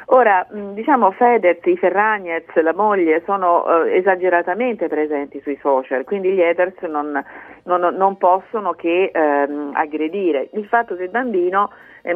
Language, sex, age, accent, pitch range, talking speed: Italian, female, 40-59, native, 150-190 Hz, 140 wpm